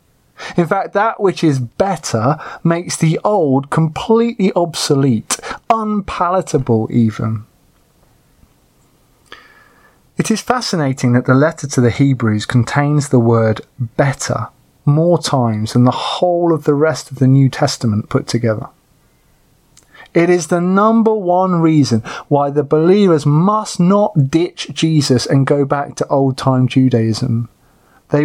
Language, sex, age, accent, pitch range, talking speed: English, male, 30-49, British, 135-200 Hz, 130 wpm